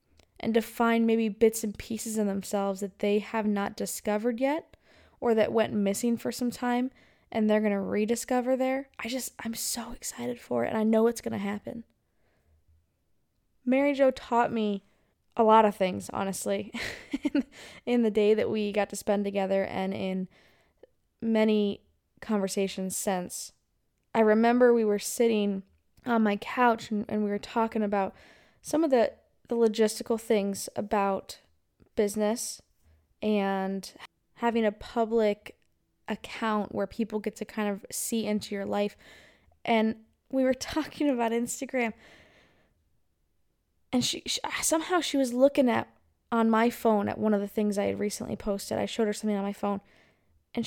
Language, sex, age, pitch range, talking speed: English, female, 10-29, 205-240 Hz, 160 wpm